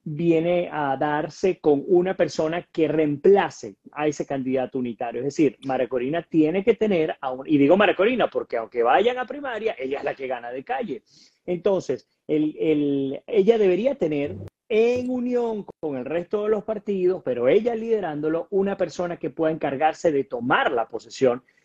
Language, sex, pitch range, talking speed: Spanish, male, 150-215 Hz, 165 wpm